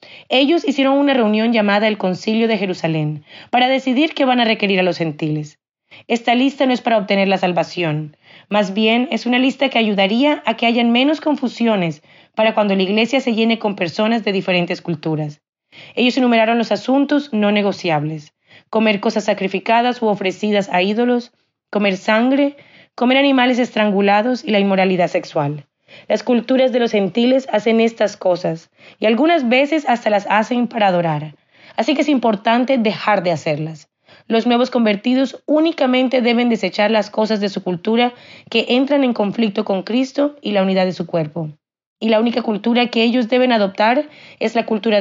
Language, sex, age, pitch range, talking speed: Spanish, female, 30-49, 185-245 Hz, 170 wpm